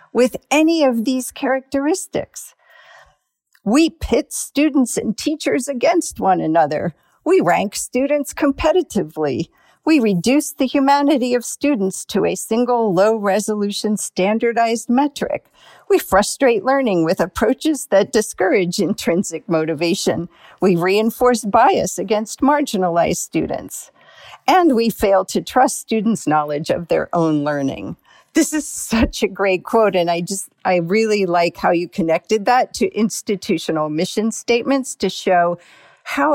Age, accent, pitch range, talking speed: 50-69, American, 175-255 Hz, 130 wpm